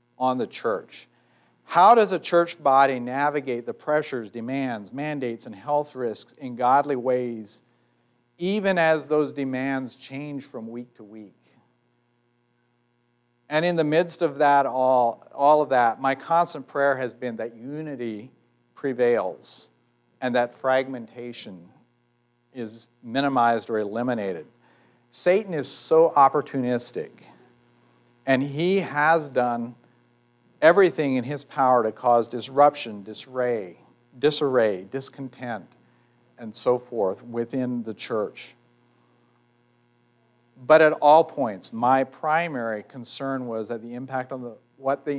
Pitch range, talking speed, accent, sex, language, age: 120-140 Hz, 120 wpm, American, male, English, 50-69